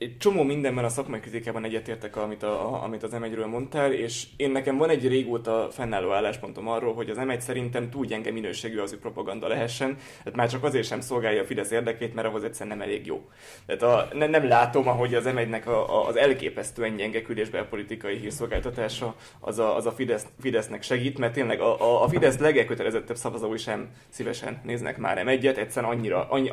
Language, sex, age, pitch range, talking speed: Hungarian, male, 20-39, 115-135 Hz, 200 wpm